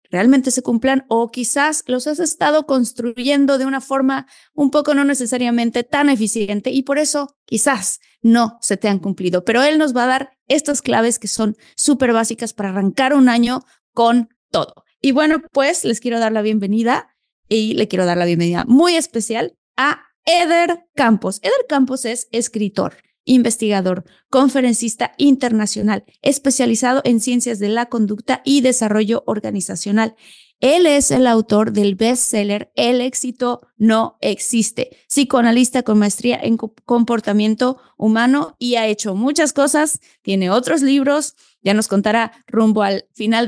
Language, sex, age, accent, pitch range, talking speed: Spanish, female, 20-39, Mexican, 215-270 Hz, 150 wpm